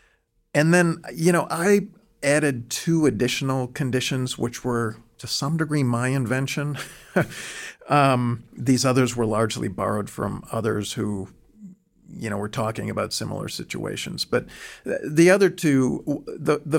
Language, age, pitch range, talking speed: English, 50-69, 110-145 Hz, 130 wpm